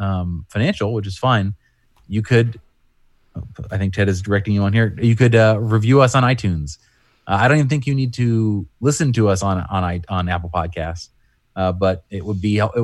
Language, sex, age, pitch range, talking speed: English, male, 30-49, 95-110 Hz, 205 wpm